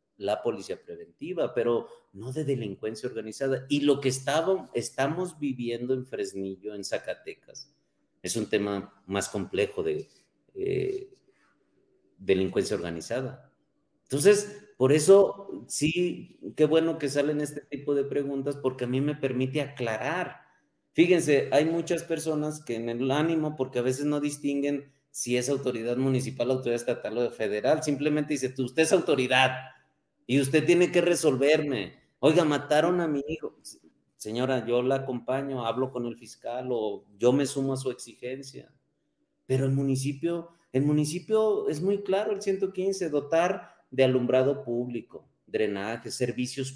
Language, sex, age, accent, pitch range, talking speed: Spanish, male, 40-59, Mexican, 125-165 Hz, 145 wpm